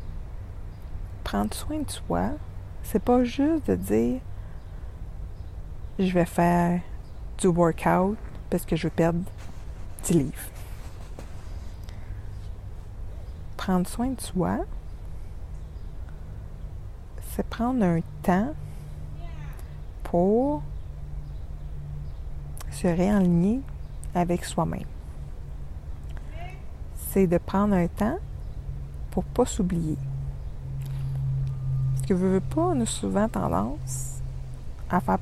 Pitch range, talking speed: 85-135 Hz, 85 wpm